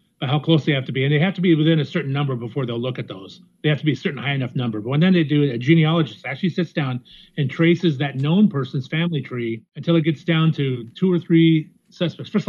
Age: 40-59